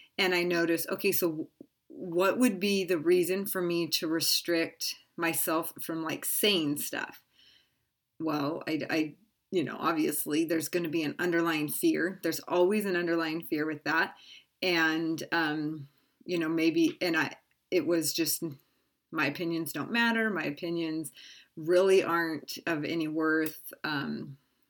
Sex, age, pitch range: female, 30-49, 160-180 Hz